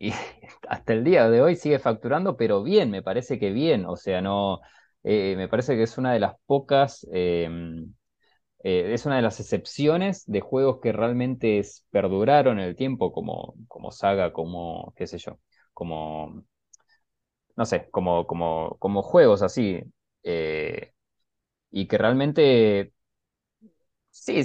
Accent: Argentinian